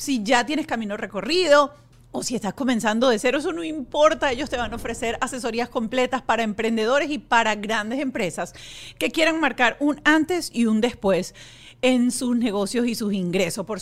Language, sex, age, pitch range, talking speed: Spanish, female, 40-59, 215-285 Hz, 180 wpm